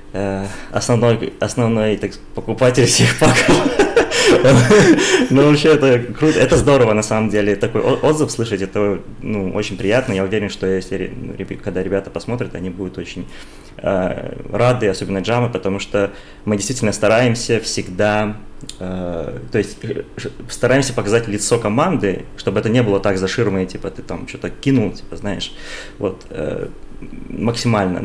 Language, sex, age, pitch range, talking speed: Russian, male, 20-39, 100-120 Hz, 130 wpm